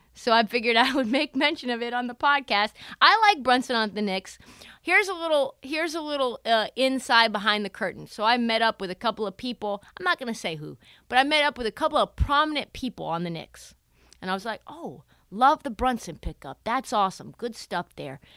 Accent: American